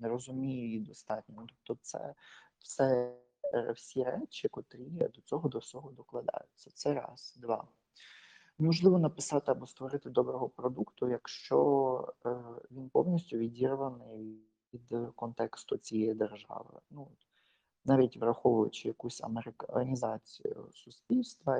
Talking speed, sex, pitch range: 110 wpm, male, 115-145 Hz